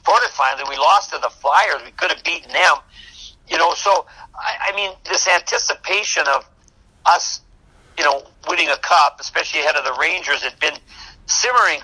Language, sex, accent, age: English, male, American, 60-79